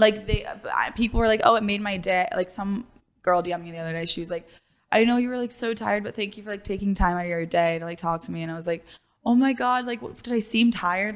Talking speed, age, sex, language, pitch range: 305 wpm, 10-29, female, English, 175-215 Hz